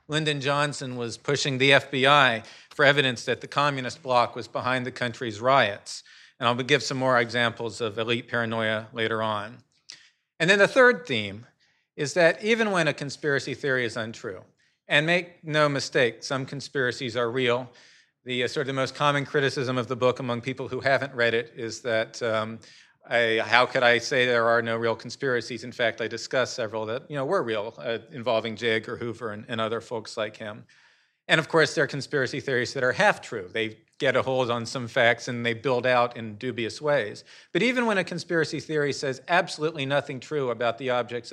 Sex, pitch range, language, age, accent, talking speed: male, 115-145 Hz, English, 40-59, American, 200 wpm